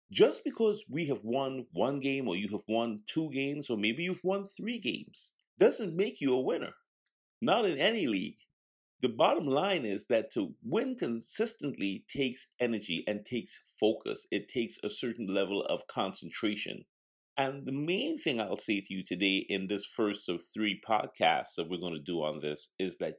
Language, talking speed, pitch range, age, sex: English, 185 wpm, 95-140 Hz, 50-69, male